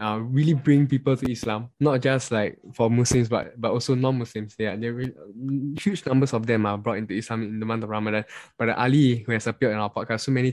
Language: English